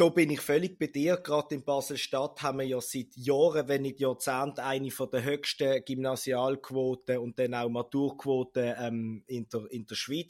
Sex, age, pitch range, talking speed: male, 20-39, 125-145 Hz, 175 wpm